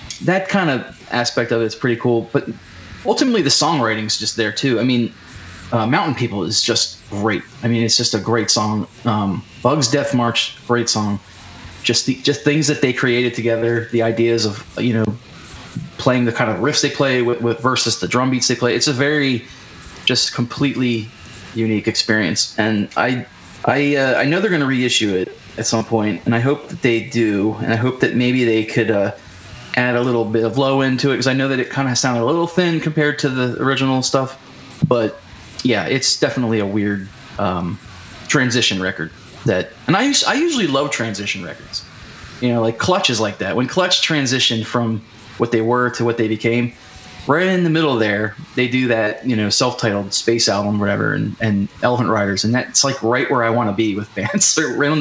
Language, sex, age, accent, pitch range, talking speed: English, male, 20-39, American, 110-130 Hz, 210 wpm